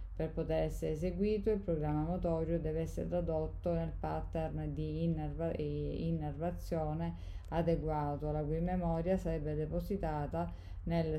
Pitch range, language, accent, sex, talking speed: 150-165 Hz, Italian, native, female, 115 wpm